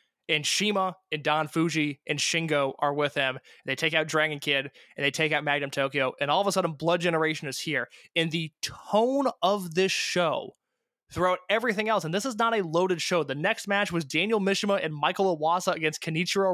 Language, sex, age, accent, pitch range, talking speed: English, male, 20-39, American, 150-185 Hz, 205 wpm